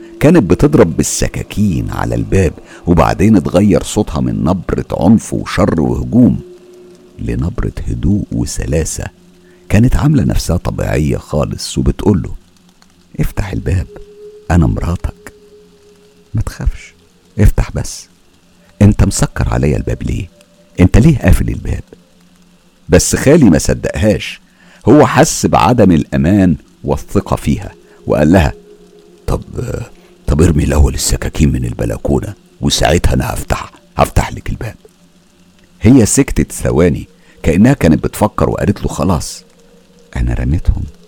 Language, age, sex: Arabic, 50-69, male